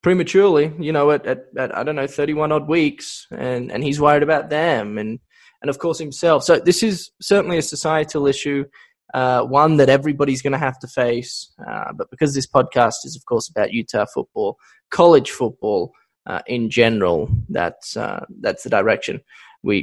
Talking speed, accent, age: 185 wpm, Australian, 10-29